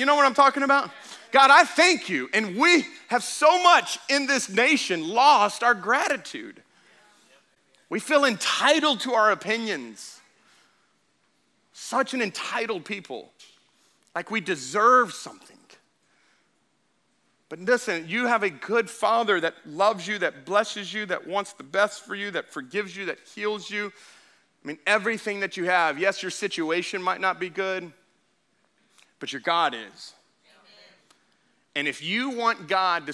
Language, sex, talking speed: English, male, 150 wpm